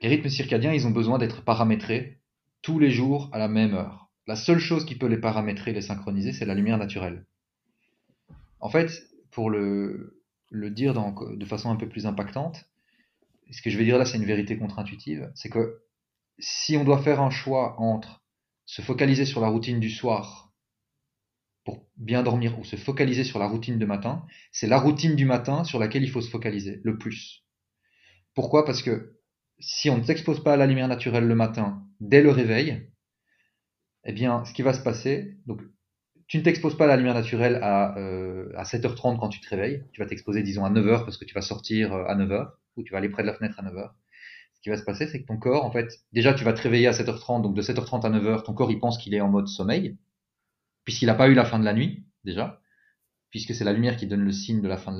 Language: French